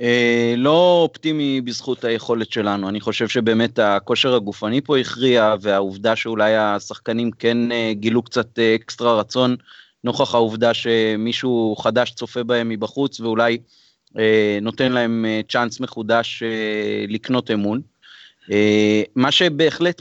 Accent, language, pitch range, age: native, Hebrew, 110-125 Hz, 30-49